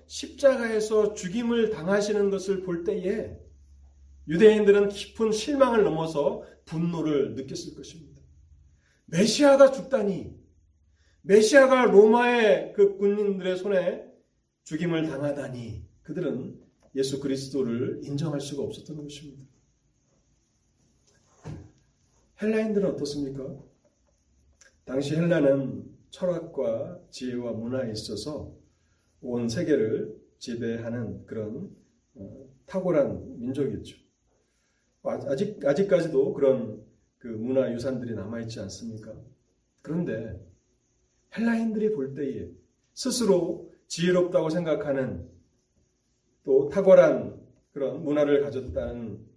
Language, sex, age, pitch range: Korean, male, 40-59, 120-200 Hz